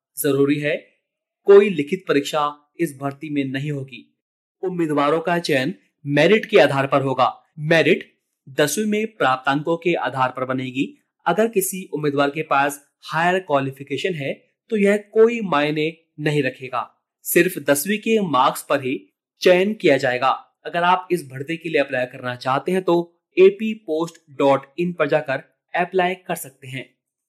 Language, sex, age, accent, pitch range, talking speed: Hindi, male, 30-49, native, 140-180 Hz, 145 wpm